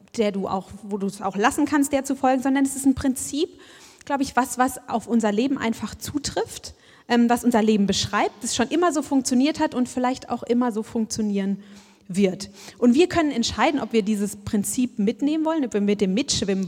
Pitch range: 215-270 Hz